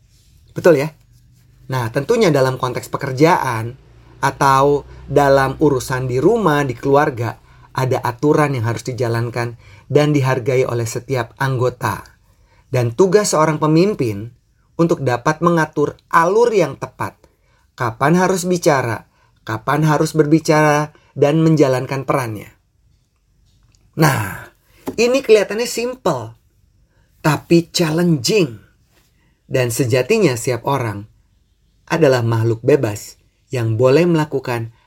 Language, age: Indonesian, 30-49